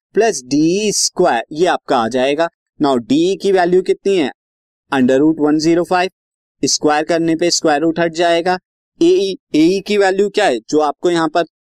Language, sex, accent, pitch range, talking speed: Hindi, male, native, 150-205 Hz, 135 wpm